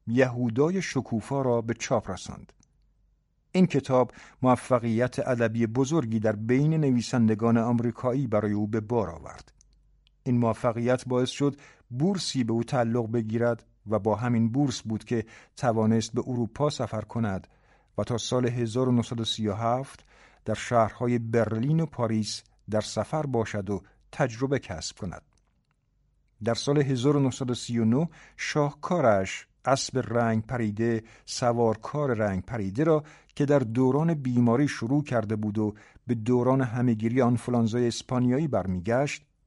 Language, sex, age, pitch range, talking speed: Persian, male, 50-69, 115-135 Hz, 120 wpm